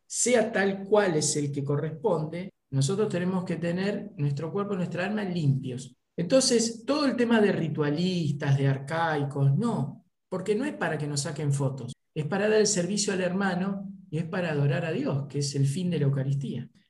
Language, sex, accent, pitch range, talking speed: Spanish, male, Argentinian, 150-215 Hz, 190 wpm